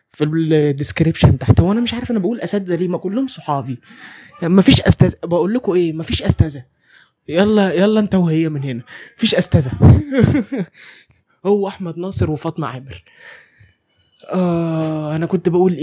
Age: 20-39